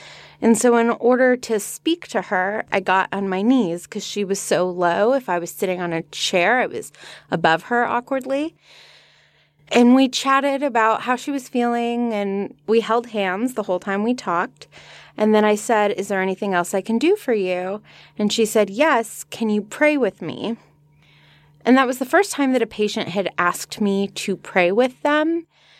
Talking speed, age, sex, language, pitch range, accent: 200 wpm, 20-39, female, English, 195-260 Hz, American